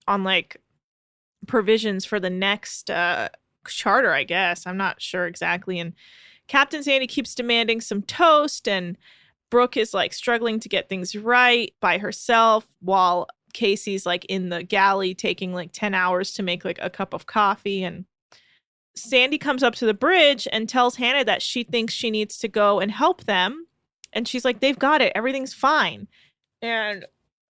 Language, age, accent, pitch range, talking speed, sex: English, 20-39, American, 195-250 Hz, 170 wpm, female